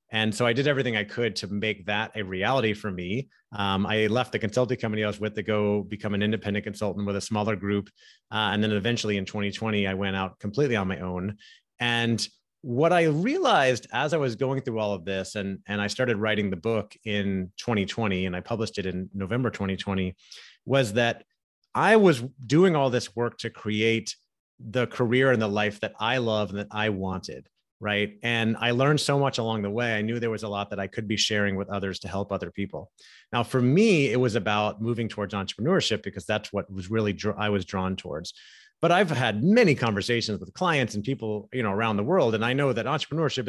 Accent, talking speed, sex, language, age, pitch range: American, 220 wpm, male, English, 30-49, 105-130 Hz